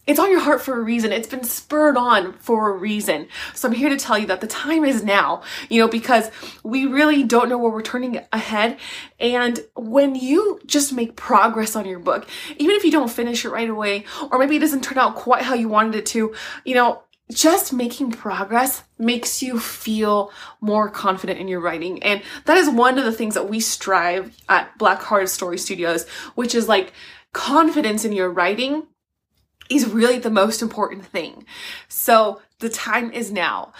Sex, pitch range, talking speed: female, 210-280 Hz, 195 wpm